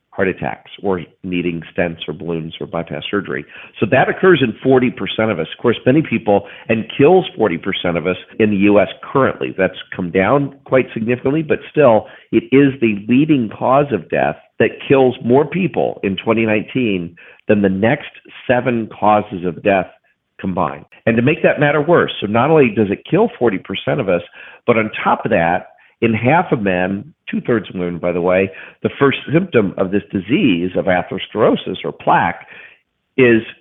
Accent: American